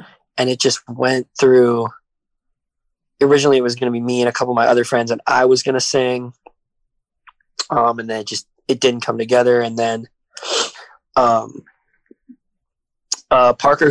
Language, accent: English, American